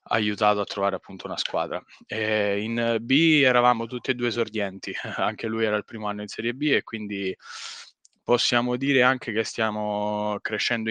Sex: male